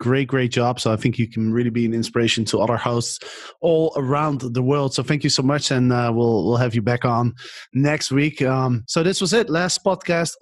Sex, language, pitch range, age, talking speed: male, English, 120-140 Hz, 30-49, 235 wpm